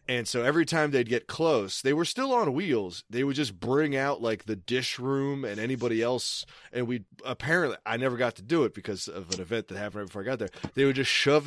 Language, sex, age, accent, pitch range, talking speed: English, male, 30-49, American, 110-150 Hz, 250 wpm